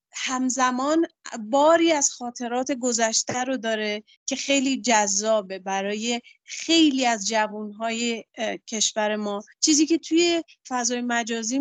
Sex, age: female, 30-49